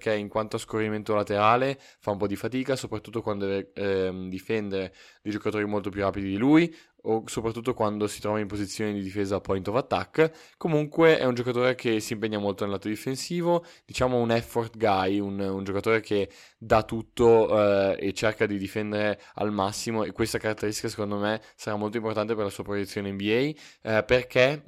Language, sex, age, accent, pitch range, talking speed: Italian, male, 20-39, native, 100-115 Hz, 190 wpm